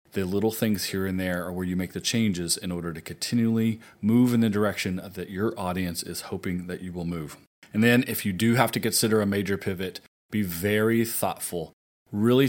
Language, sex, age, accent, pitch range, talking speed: English, male, 30-49, American, 95-110 Hz, 210 wpm